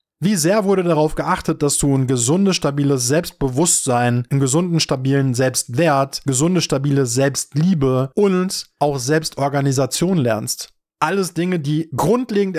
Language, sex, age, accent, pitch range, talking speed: German, male, 20-39, German, 130-180 Hz, 125 wpm